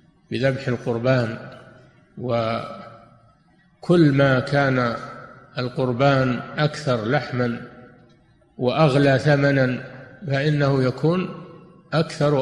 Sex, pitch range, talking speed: male, 130-175 Hz, 65 wpm